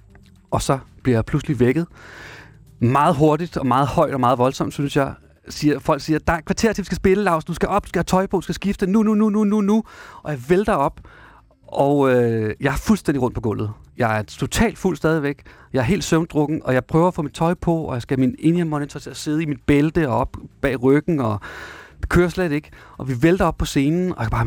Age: 30-49